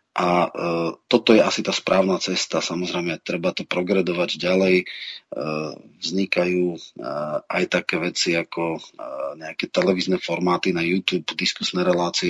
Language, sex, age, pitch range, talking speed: Slovak, male, 30-49, 90-95 Hz, 135 wpm